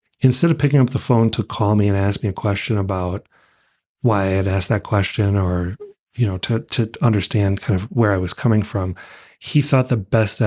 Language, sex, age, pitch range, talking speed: English, male, 30-49, 100-115 Hz, 220 wpm